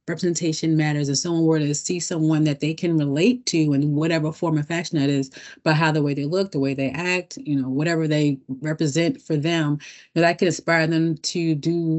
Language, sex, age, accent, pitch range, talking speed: English, female, 30-49, American, 140-165 Hz, 225 wpm